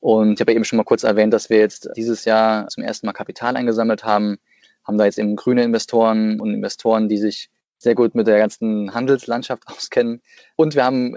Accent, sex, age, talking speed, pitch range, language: German, male, 20-39, 210 wpm, 110-125 Hz, German